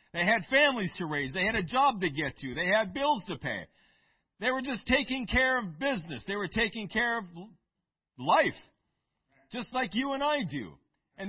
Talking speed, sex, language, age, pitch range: 195 wpm, male, English, 50-69, 170-235 Hz